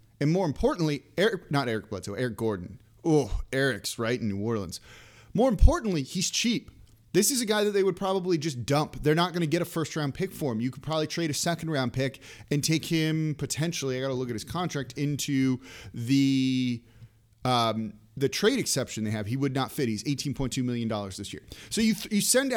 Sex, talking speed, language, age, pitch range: male, 215 wpm, English, 30-49, 115-175 Hz